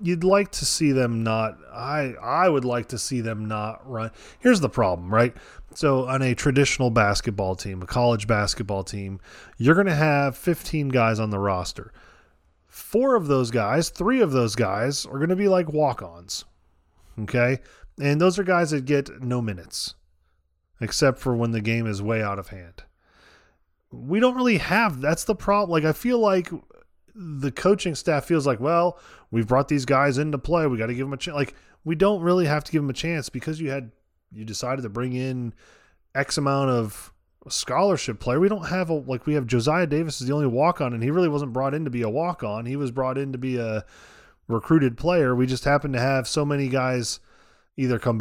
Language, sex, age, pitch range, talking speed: English, male, 20-39, 115-160 Hz, 210 wpm